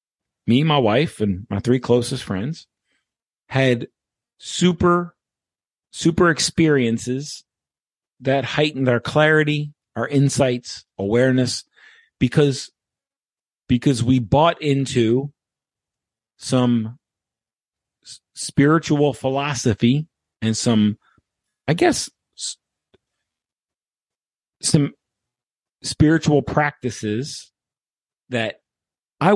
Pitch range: 100-135 Hz